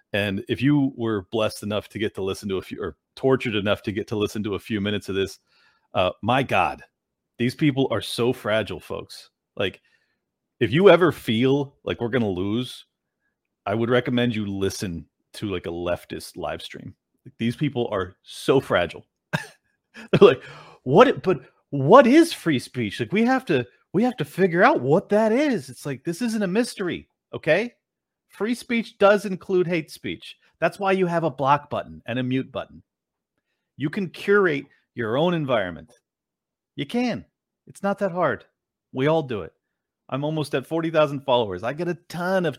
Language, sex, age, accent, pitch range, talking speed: English, male, 40-59, American, 110-170 Hz, 185 wpm